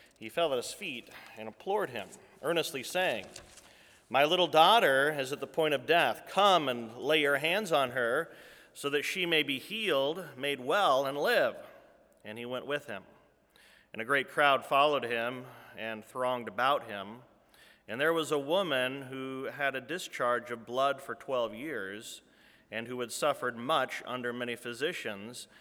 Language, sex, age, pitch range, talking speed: English, male, 30-49, 120-165 Hz, 170 wpm